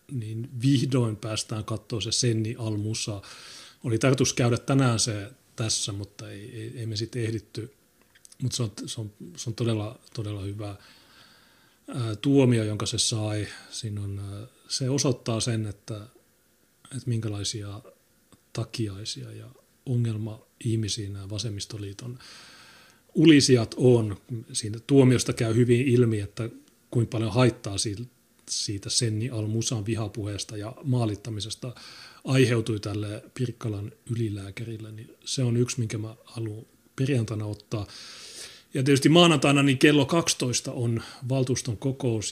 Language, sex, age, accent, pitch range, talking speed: Finnish, male, 30-49, native, 105-125 Hz, 125 wpm